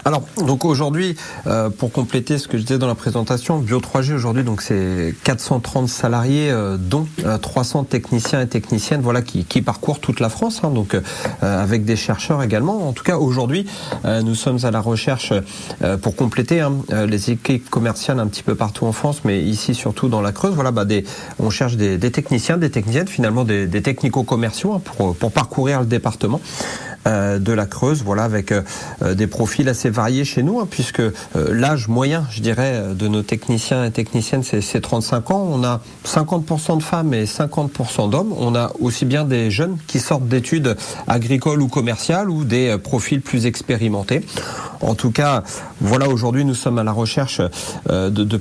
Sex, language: male, French